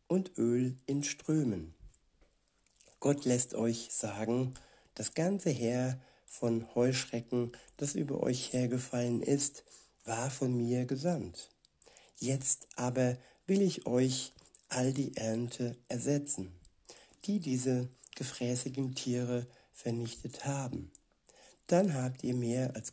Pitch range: 120-135 Hz